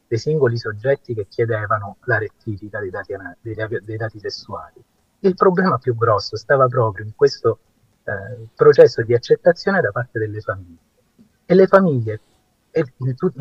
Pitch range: 110-160 Hz